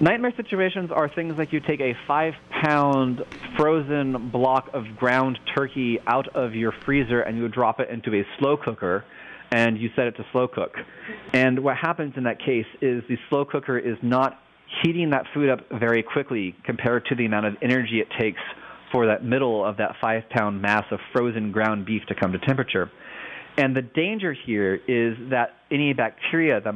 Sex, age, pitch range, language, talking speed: male, 30-49, 110-135 Hz, English, 185 wpm